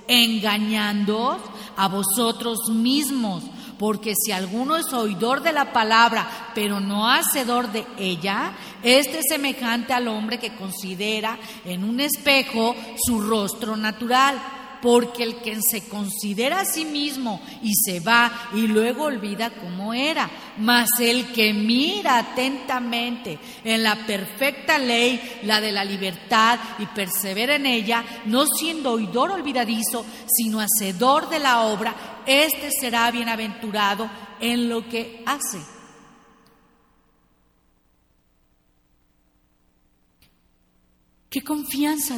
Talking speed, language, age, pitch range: 115 wpm, English, 40-59, 210-250 Hz